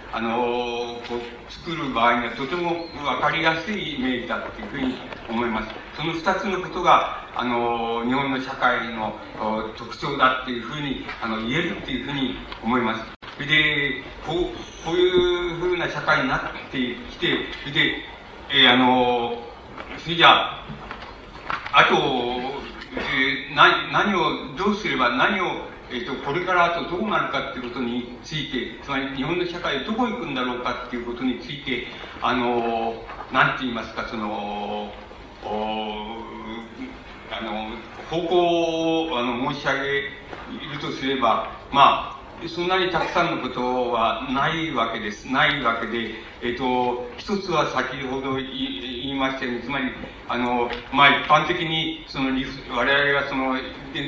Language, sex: Japanese, male